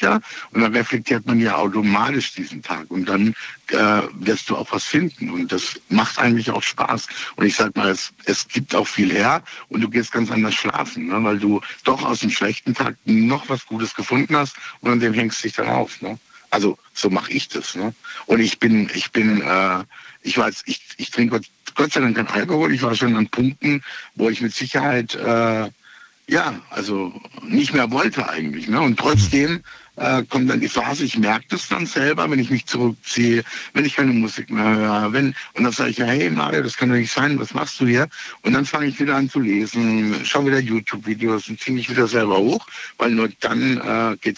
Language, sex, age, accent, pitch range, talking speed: German, male, 60-79, German, 110-130 Hz, 220 wpm